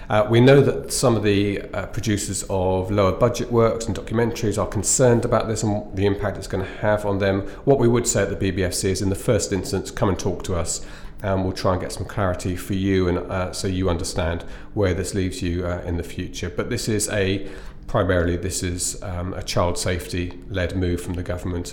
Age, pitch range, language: 40-59, 95-115 Hz, English